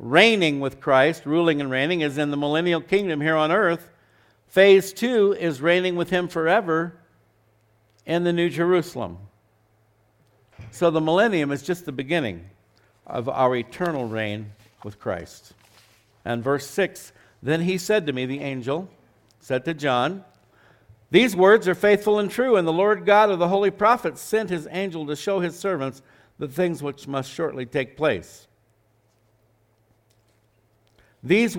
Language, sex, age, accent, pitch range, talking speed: English, male, 60-79, American, 115-170 Hz, 150 wpm